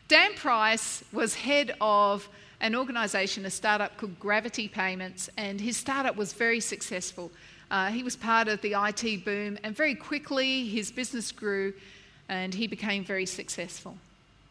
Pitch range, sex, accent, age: 195-240 Hz, female, Australian, 40-59